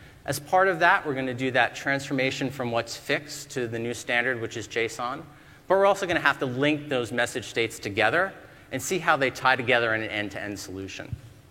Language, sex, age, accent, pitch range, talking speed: English, male, 30-49, American, 115-150 Hz, 220 wpm